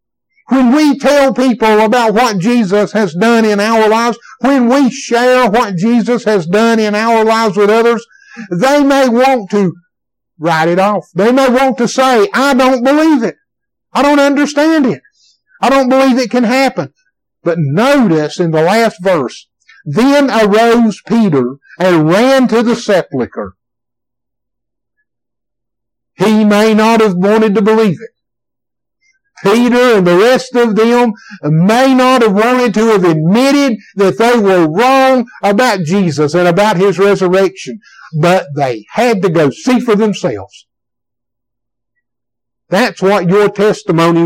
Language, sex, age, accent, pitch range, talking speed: English, male, 60-79, American, 170-245 Hz, 145 wpm